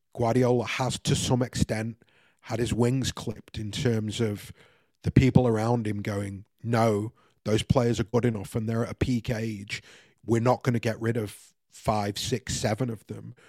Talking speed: 180 wpm